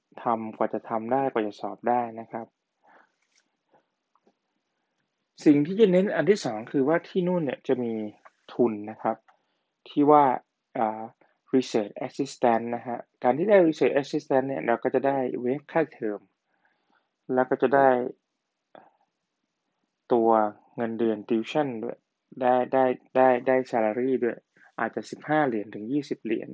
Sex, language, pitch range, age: male, Thai, 115-140 Hz, 20-39